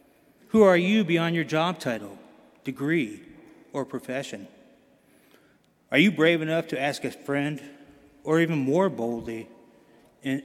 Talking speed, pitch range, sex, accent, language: 130 wpm, 135-170 Hz, male, American, English